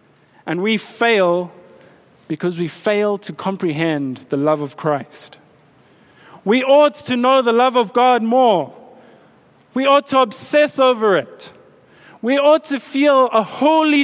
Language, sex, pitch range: English, male, 175-250 Hz